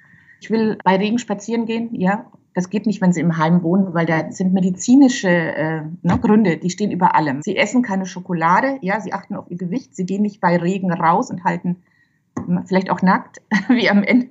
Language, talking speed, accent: German, 210 wpm, German